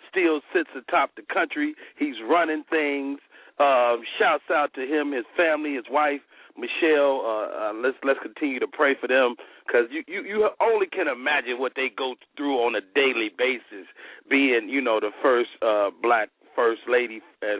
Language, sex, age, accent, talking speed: English, male, 40-59, American, 175 wpm